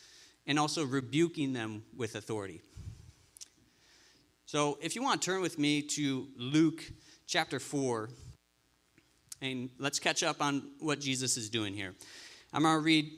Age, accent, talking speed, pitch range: 40-59, American, 145 wpm, 125-160 Hz